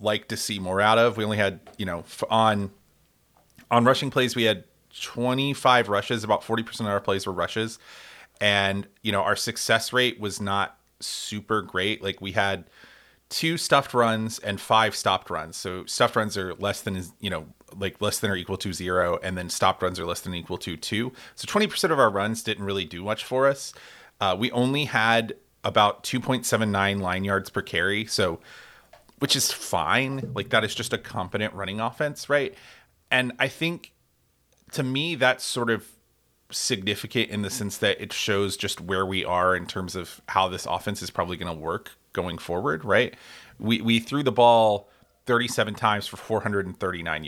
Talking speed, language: 190 wpm, English